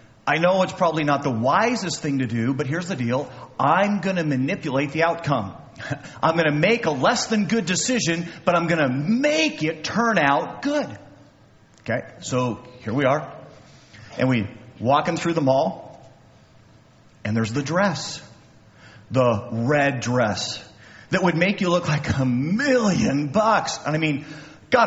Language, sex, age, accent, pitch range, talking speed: English, male, 40-59, American, 135-220 Hz, 170 wpm